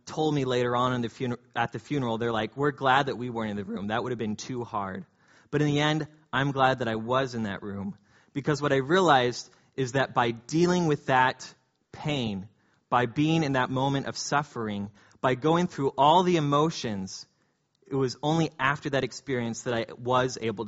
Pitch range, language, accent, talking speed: 115-140 Hz, English, American, 210 wpm